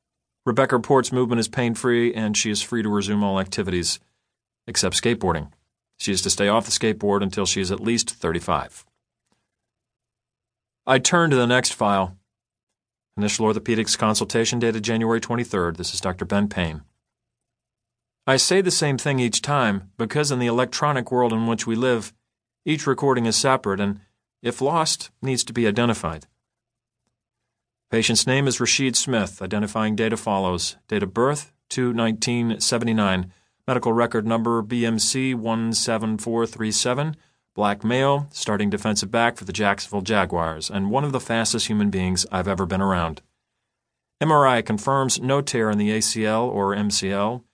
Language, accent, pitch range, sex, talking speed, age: English, American, 100-120 Hz, male, 150 wpm, 40-59